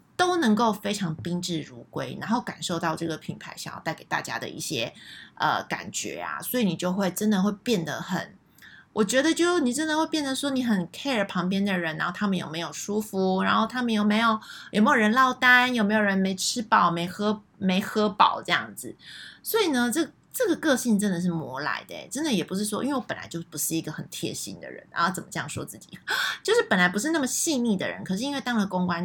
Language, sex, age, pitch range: Chinese, female, 20-39, 175-250 Hz